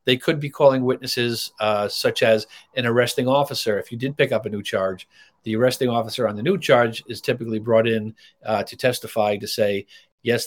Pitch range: 105-125 Hz